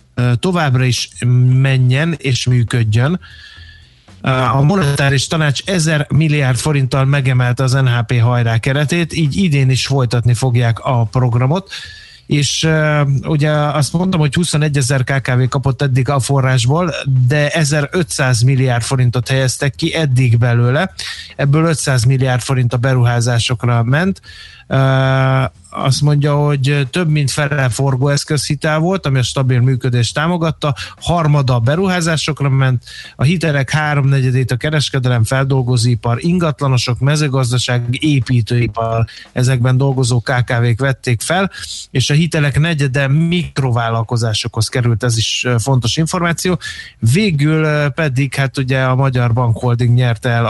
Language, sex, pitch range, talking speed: Hungarian, male, 125-150 Hz, 120 wpm